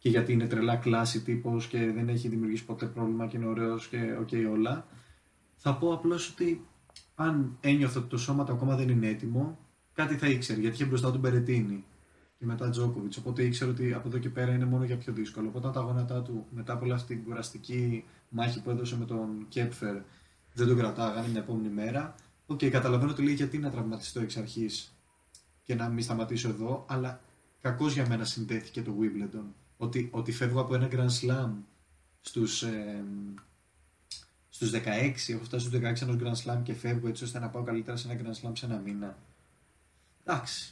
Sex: male